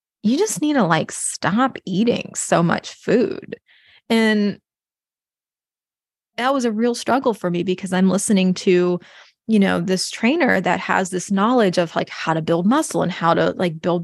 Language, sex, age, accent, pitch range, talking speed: English, female, 20-39, American, 180-225 Hz, 175 wpm